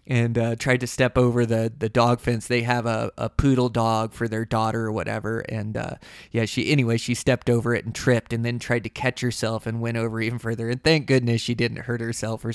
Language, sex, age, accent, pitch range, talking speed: English, male, 20-39, American, 115-145 Hz, 245 wpm